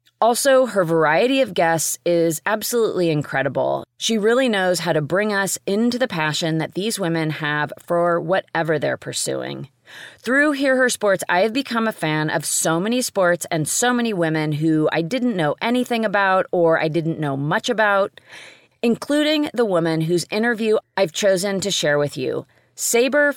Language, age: English, 30-49